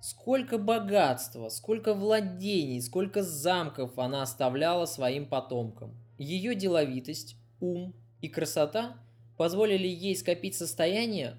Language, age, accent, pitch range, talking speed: Russian, 20-39, native, 130-200 Hz, 100 wpm